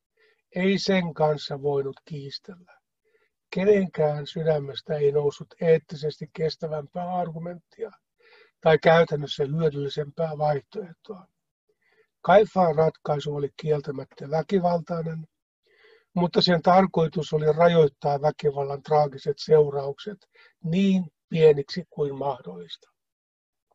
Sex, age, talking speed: male, 60-79, 85 wpm